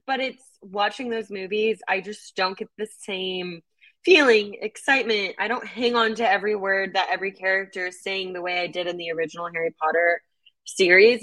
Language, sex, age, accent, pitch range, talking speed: English, female, 20-39, American, 170-210 Hz, 185 wpm